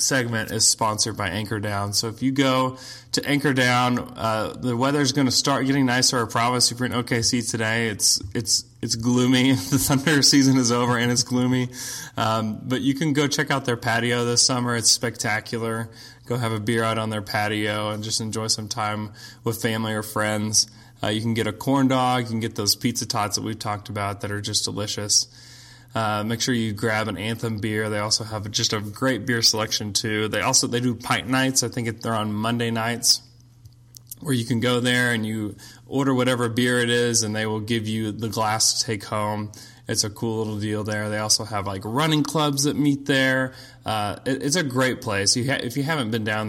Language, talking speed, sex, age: English, 220 wpm, male, 20-39